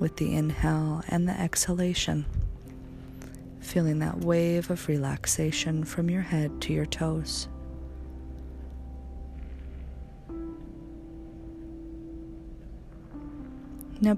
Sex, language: female, English